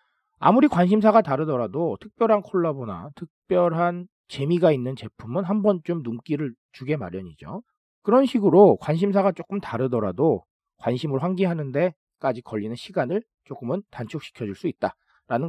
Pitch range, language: 125-200 Hz, Korean